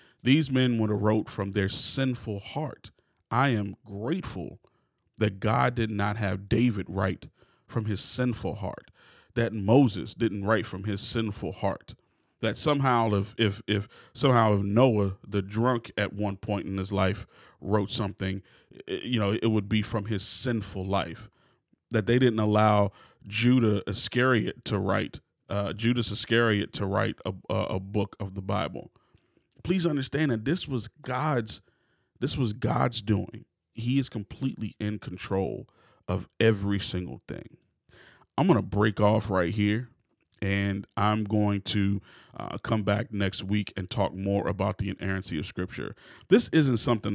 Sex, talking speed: male, 155 wpm